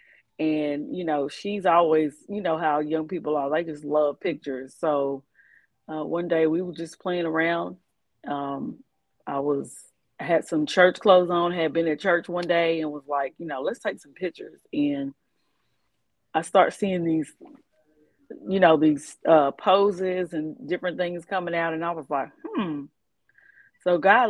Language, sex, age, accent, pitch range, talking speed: English, female, 30-49, American, 150-175 Hz, 170 wpm